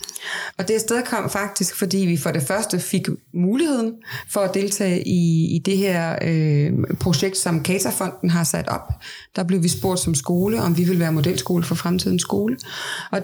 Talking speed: 185 wpm